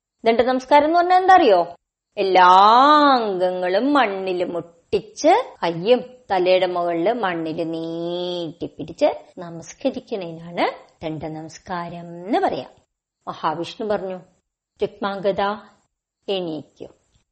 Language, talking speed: Malayalam, 85 wpm